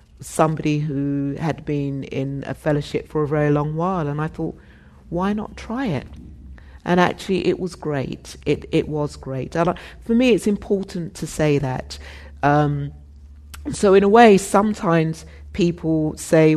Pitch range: 145-175 Hz